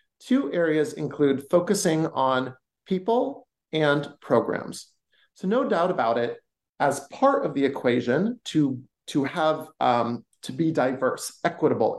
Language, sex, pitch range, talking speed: English, male, 135-195 Hz, 130 wpm